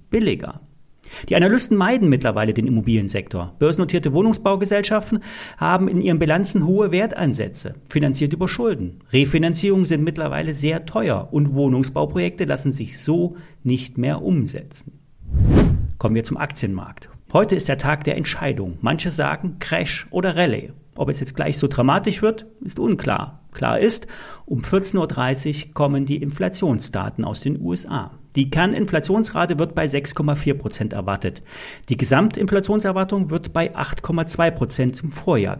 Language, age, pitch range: German, 40-59, 135-185 Hz